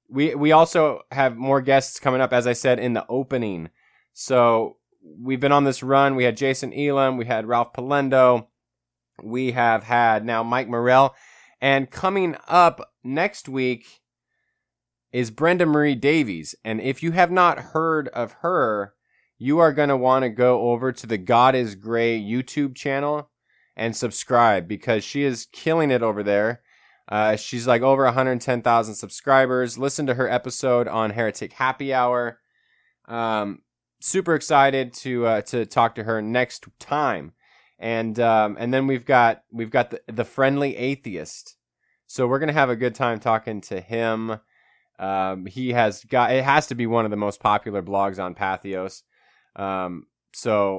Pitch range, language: 110-135 Hz, English